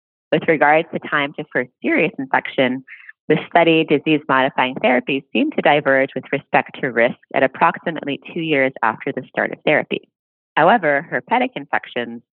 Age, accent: 20-39, American